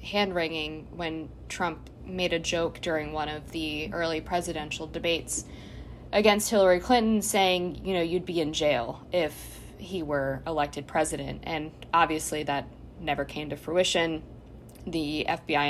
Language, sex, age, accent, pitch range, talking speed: English, female, 20-39, American, 150-175 Hz, 140 wpm